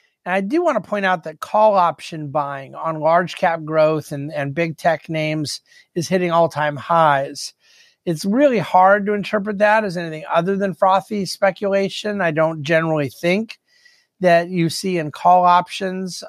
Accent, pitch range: American, 155-195 Hz